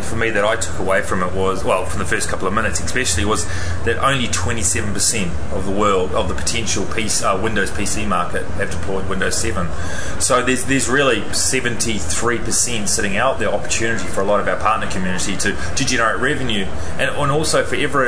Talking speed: 200 wpm